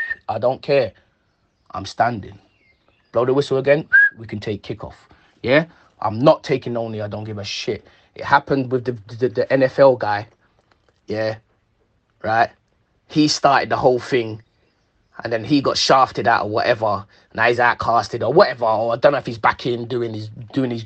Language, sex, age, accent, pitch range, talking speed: English, male, 20-39, British, 115-185 Hz, 180 wpm